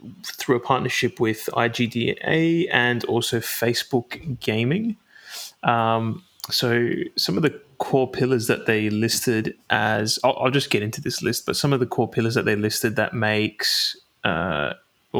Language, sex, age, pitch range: English, male, 20-39, 110-130 Hz